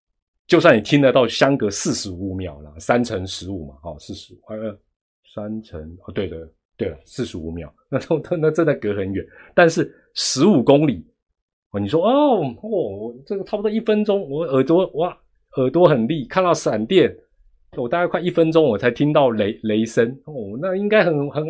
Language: Chinese